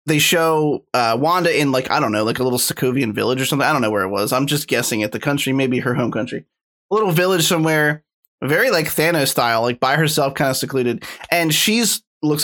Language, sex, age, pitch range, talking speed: English, male, 20-39, 130-170 Hz, 235 wpm